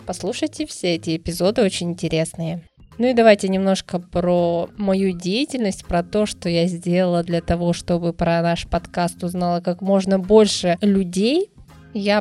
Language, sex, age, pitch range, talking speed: Russian, female, 20-39, 175-210 Hz, 150 wpm